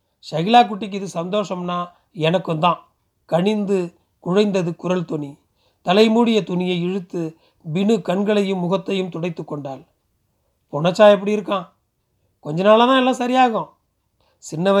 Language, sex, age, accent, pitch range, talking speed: Tamil, male, 40-59, native, 170-210 Hz, 110 wpm